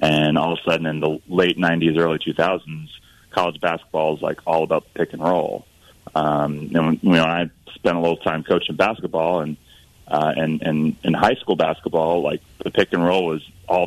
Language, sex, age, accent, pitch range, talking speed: English, male, 30-49, American, 80-95 Hz, 210 wpm